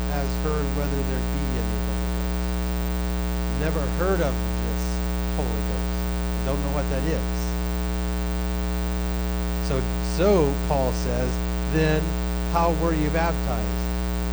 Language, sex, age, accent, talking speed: English, male, 40-59, American, 115 wpm